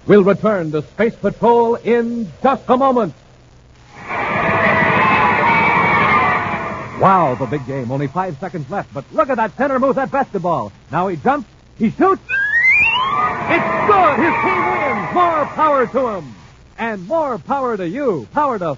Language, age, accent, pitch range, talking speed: English, 50-69, American, 155-245 Hz, 145 wpm